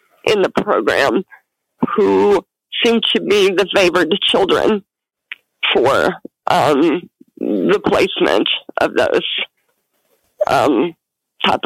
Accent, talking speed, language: American, 95 wpm, English